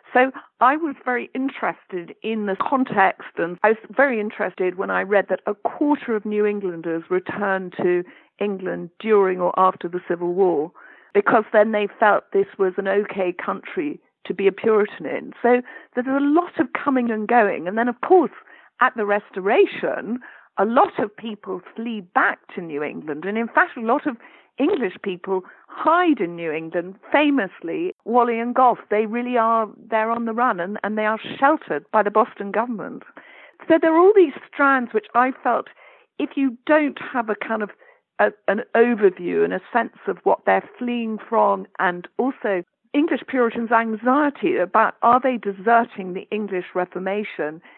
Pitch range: 195-255 Hz